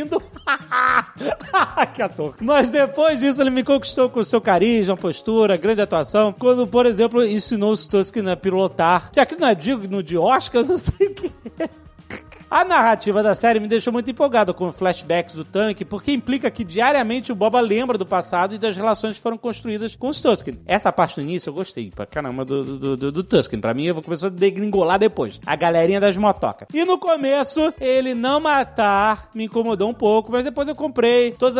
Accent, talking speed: Brazilian, 200 wpm